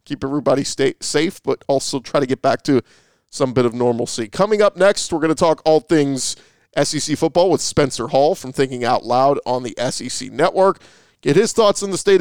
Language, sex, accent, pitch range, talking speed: English, male, American, 125-155 Hz, 210 wpm